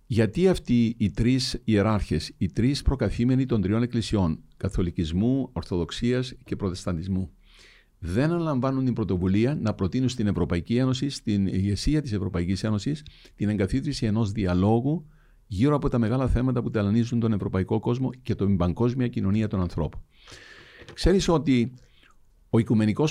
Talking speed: 140 wpm